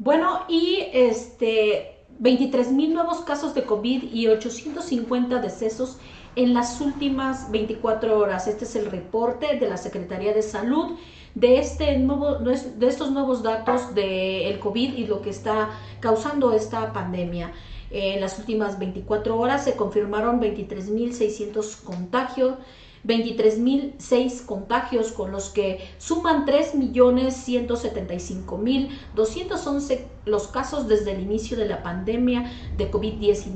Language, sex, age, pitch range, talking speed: Spanish, female, 40-59, 210-260 Hz, 120 wpm